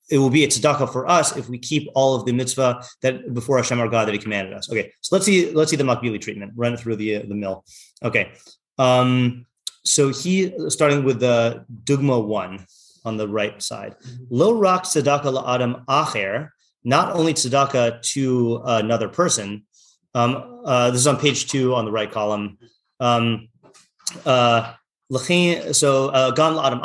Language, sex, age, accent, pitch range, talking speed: English, male, 30-49, American, 120-140 Hz, 175 wpm